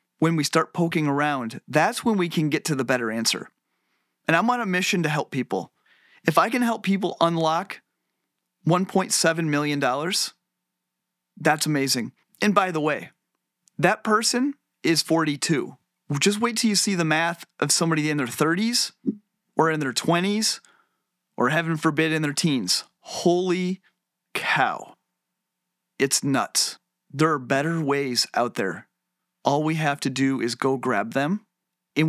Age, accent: 30-49, American